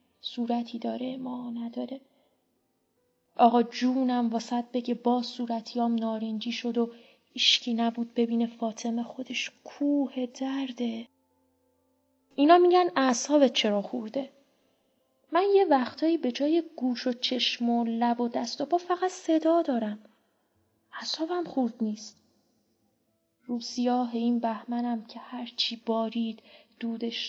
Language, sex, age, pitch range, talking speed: Persian, female, 20-39, 230-265 Hz, 110 wpm